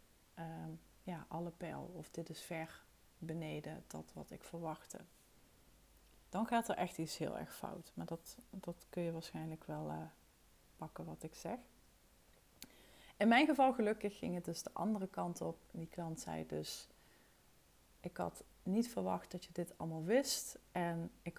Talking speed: 165 wpm